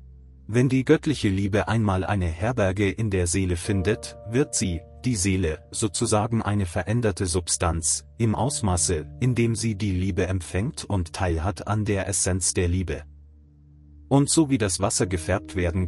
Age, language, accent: 30-49, German, German